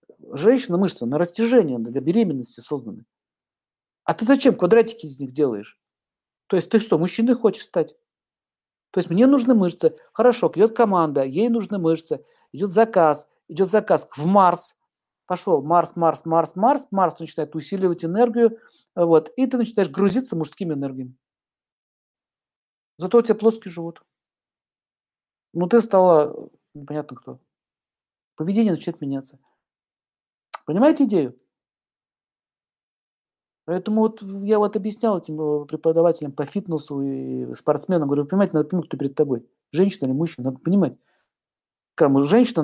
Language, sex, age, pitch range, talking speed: Russian, male, 50-69, 140-205 Hz, 135 wpm